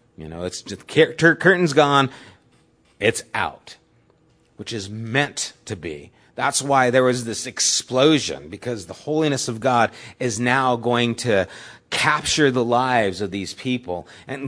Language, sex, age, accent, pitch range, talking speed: English, male, 30-49, American, 100-135 Hz, 145 wpm